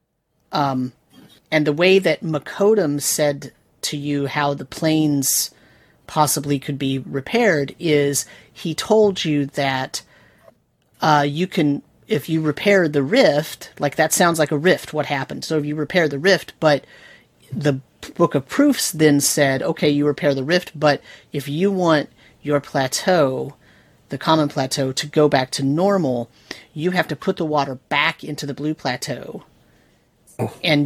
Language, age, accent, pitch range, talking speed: English, 30-49, American, 140-160 Hz, 160 wpm